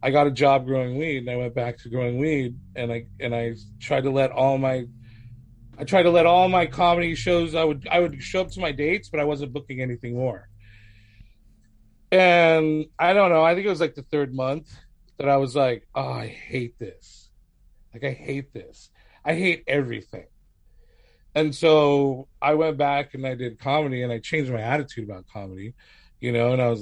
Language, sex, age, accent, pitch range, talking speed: English, male, 30-49, American, 120-160 Hz, 210 wpm